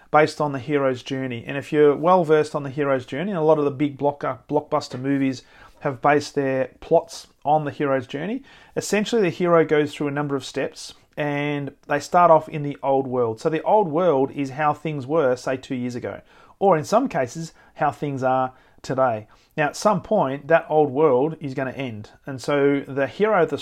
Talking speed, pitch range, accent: 210 wpm, 135-160 Hz, Australian